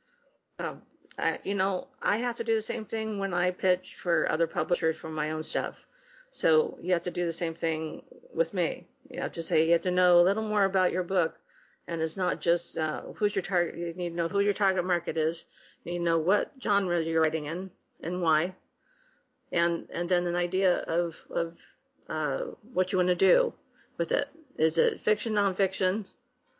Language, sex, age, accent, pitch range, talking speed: English, female, 50-69, American, 170-200 Hz, 210 wpm